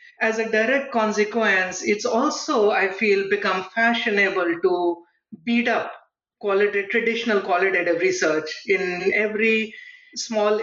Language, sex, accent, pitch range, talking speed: English, female, Indian, 180-230 Hz, 115 wpm